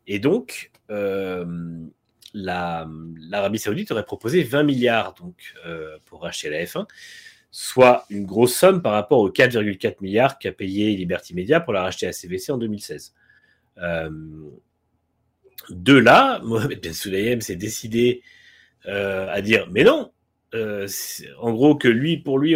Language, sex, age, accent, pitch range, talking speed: French, male, 30-49, French, 95-135 Hz, 150 wpm